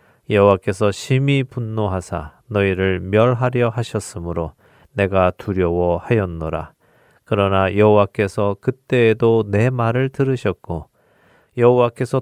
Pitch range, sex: 95-120 Hz, male